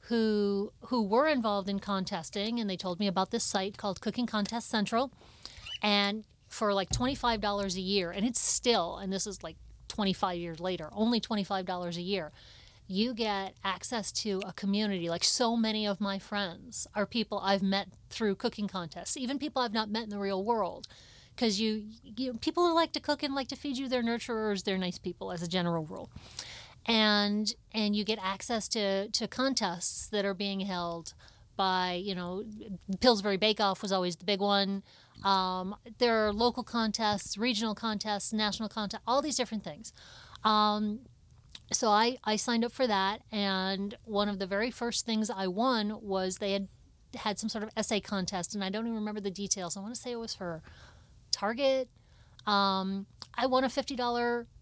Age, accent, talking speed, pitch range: 30-49, American, 185 wpm, 195-230 Hz